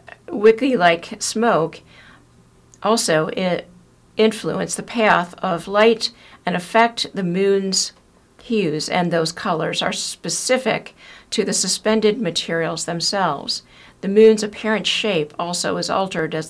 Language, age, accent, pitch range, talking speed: English, 50-69, American, 175-220 Hz, 115 wpm